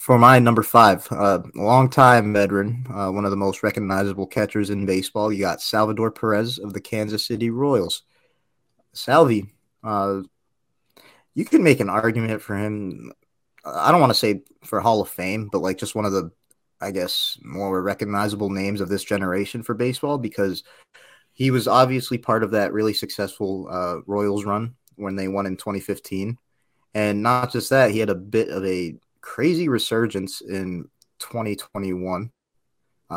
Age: 20-39